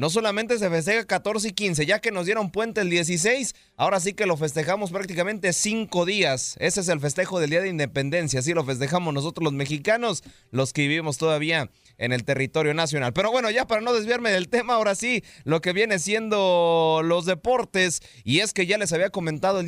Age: 30-49